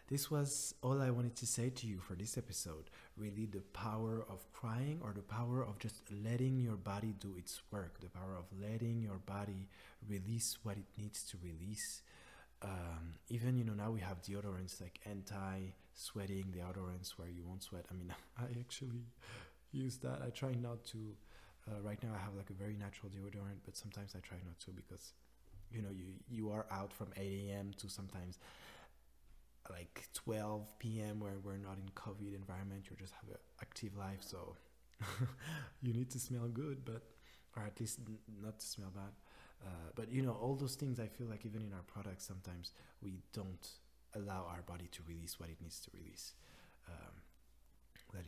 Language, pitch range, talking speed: English, 90-110 Hz, 185 wpm